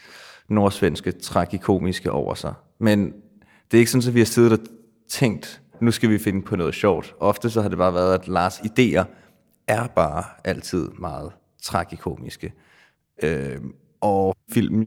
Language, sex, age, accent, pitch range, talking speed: Danish, male, 30-49, native, 95-110 Hz, 155 wpm